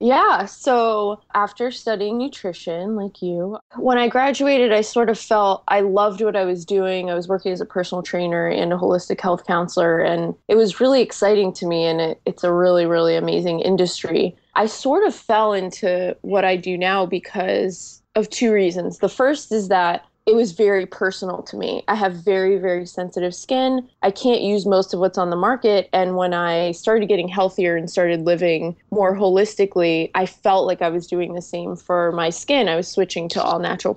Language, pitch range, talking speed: English, 175-210 Hz, 200 wpm